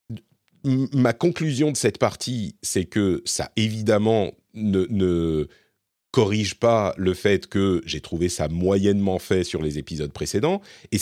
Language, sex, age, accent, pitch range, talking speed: French, male, 40-59, French, 90-135 Hz, 140 wpm